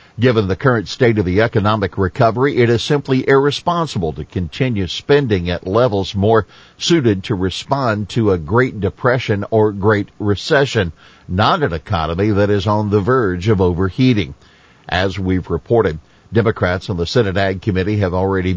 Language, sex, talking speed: English, male, 160 wpm